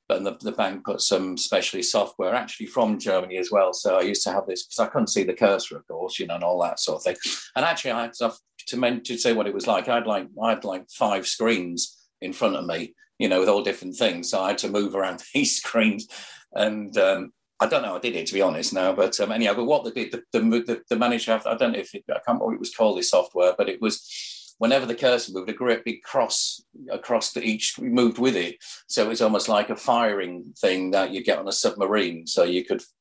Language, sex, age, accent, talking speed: English, male, 50-69, British, 260 wpm